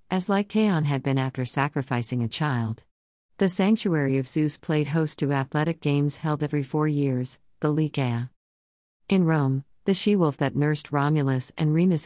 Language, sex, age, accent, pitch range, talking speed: English, female, 50-69, American, 130-155 Hz, 160 wpm